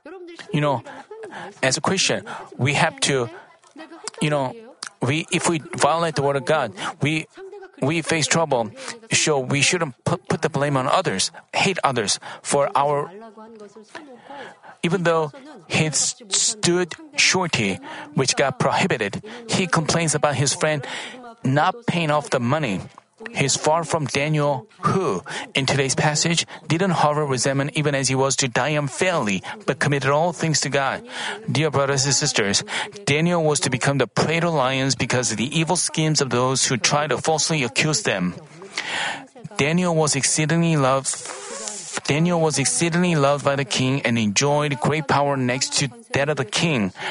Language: Korean